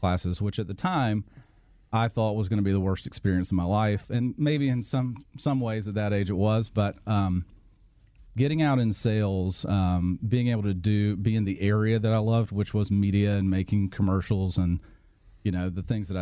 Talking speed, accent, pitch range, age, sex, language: 215 wpm, American, 95-110 Hz, 40-59, male, English